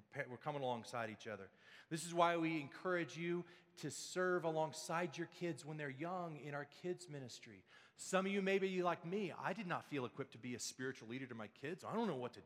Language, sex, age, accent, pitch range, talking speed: English, male, 40-59, American, 145-195 Hz, 230 wpm